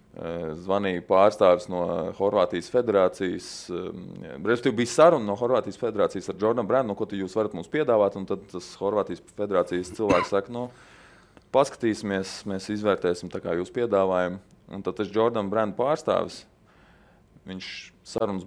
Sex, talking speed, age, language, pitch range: male, 135 wpm, 20-39, English, 95-120 Hz